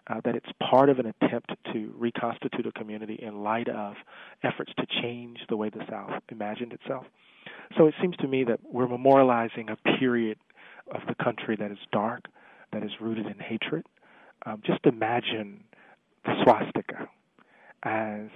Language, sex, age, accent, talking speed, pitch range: English, male, 40-59, American, 165 wpm, 110-130 Hz